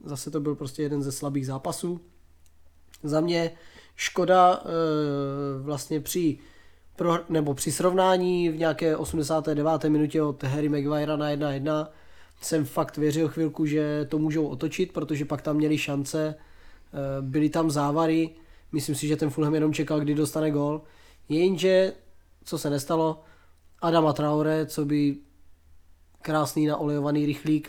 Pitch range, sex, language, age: 140-160 Hz, male, Czech, 20-39